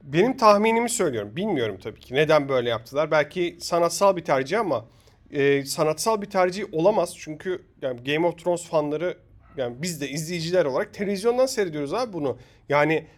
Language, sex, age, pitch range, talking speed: Turkish, male, 40-59, 135-195 Hz, 160 wpm